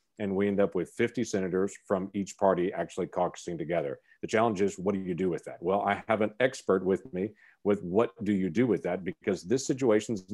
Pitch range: 95-115 Hz